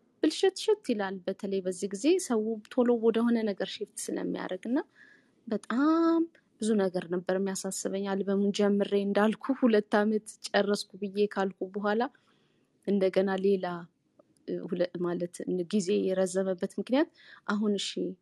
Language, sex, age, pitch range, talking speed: English, female, 20-39, 195-255 Hz, 85 wpm